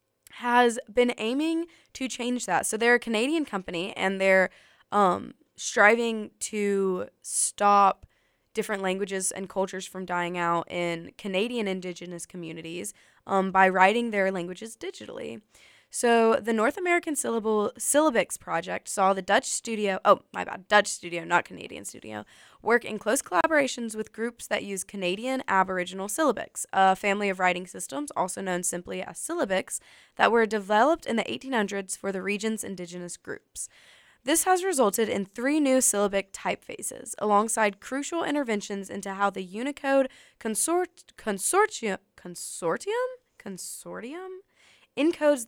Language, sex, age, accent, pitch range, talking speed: English, female, 10-29, American, 190-260 Hz, 135 wpm